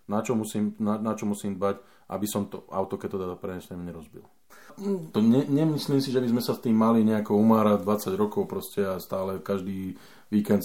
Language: Slovak